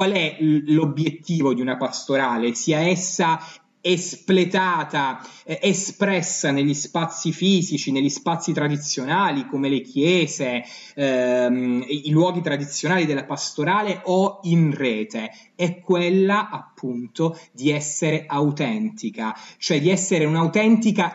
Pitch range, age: 140-185 Hz, 30-49